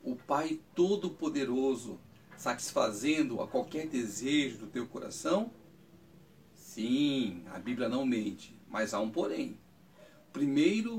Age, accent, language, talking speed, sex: 60-79, Brazilian, Portuguese, 110 wpm, male